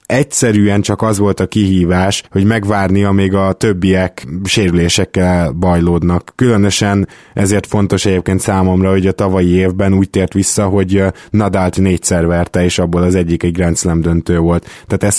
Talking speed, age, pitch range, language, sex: 160 wpm, 20-39, 95-110 Hz, Hungarian, male